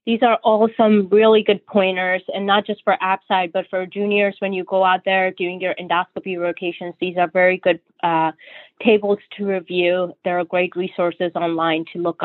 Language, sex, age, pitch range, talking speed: English, female, 20-39, 175-220 Hz, 190 wpm